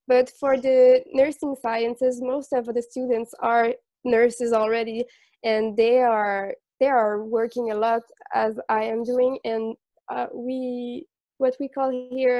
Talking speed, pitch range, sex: 150 wpm, 230-265 Hz, female